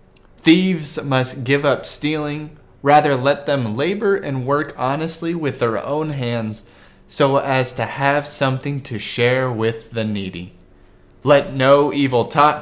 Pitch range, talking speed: 110-150 Hz, 145 wpm